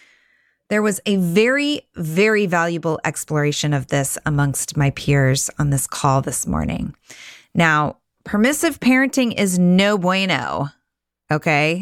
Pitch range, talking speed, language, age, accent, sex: 155-220 Hz, 120 wpm, English, 30-49, American, female